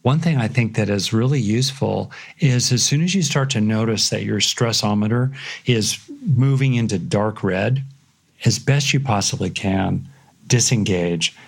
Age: 50-69